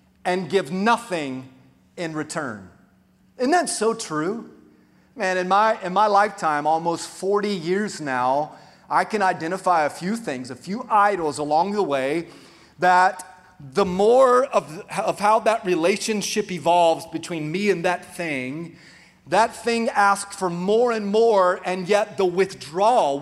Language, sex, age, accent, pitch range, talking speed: English, male, 30-49, American, 165-210 Hz, 145 wpm